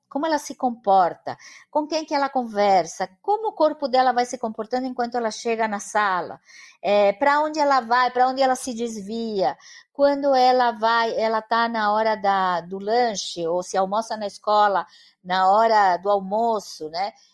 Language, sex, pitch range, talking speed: English, female, 205-265 Hz, 175 wpm